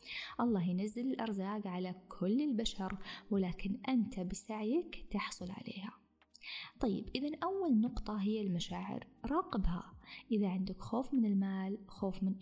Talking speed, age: 120 wpm, 20-39